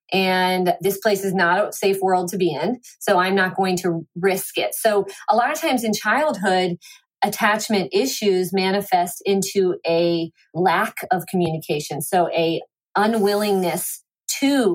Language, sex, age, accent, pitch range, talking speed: English, female, 30-49, American, 185-230 Hz, 150 wpm